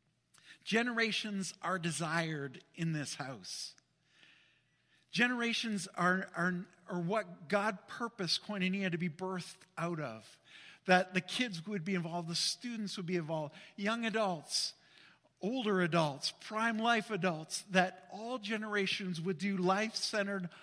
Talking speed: 125 wpm